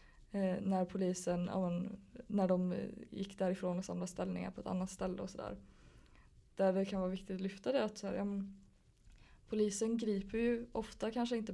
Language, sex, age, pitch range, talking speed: Swedish, female, 20-39, 185-205 Hz, 170 wpm